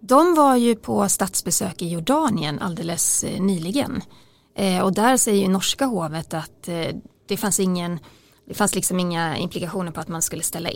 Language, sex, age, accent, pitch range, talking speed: Swedish, female, 30-49, native, 170-220 Hz, 160 wpm